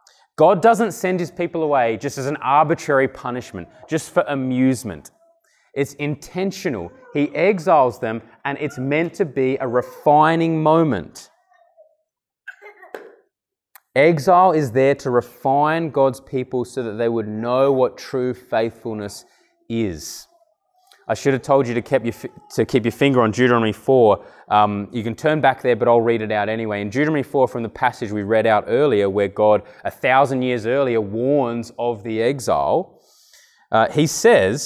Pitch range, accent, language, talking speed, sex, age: 120-180 Hz, Australian, English, 160 wpm, male, 20-39